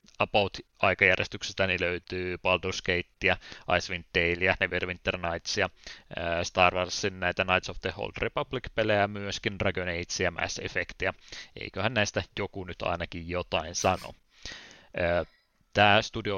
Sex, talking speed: male, 125 wpm